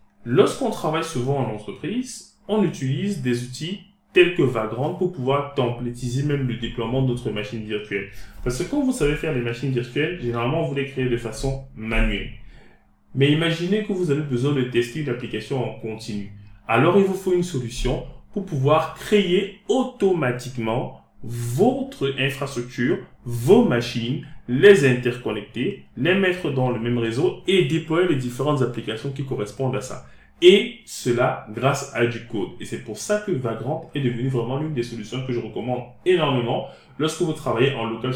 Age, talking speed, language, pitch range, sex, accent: 20-39, 170 wpm, French, 120-165 Hz, male, French